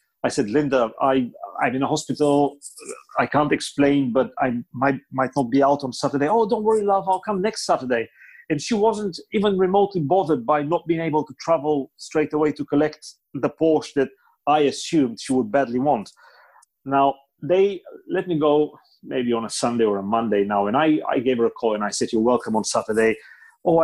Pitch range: 125-155 Hz